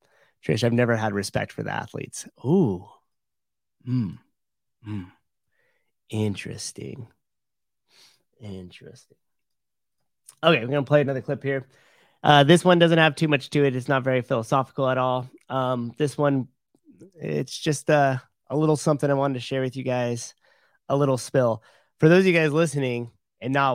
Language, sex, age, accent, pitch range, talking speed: English, male, 30-49, American, 120-150 Hz, 160 wpm